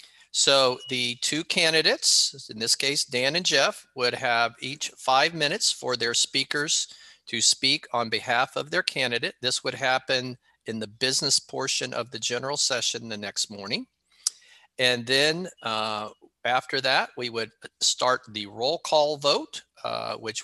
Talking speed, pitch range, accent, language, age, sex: 155 wpm, 120-145 Hz, American, English, 40-59, male